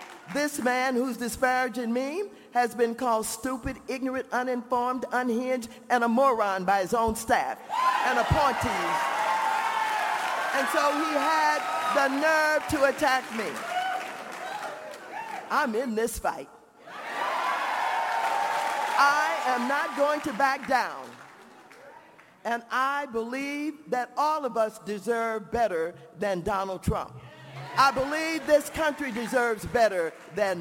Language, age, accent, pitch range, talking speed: English, 50-69, American, 210-275 Hz, 120 wpm